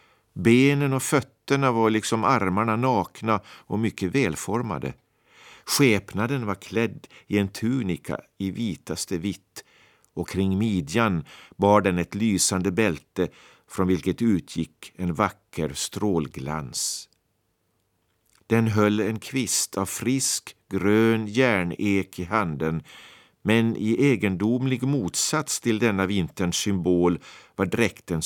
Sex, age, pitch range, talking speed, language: male, 50-69, 90-115 Hz, 115 wpm, Swedish